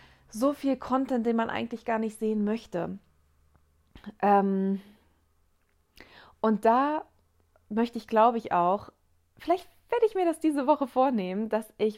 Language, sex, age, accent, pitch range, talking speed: German, female, 30-49, German, 195-230 Hz, 135 wpm